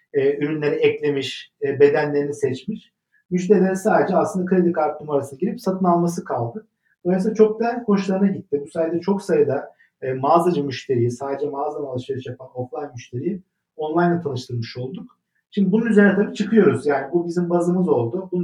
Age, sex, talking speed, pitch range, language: 50-69, male, 155 wpm, 145-190 Hz, Turkish